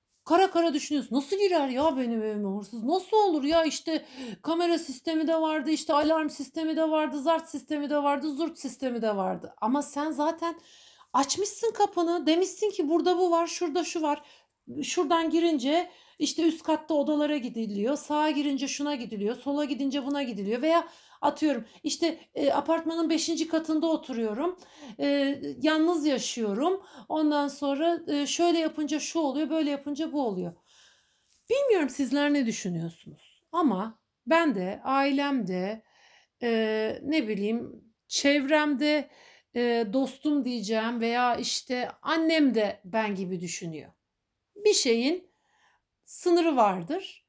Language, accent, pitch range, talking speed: Turkish, native, 245-325 Hz, 135 wpm